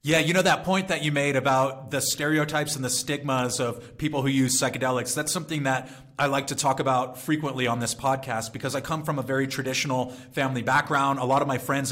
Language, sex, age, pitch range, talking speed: English, male, 30-49, 130-155 Hz, 225 wpm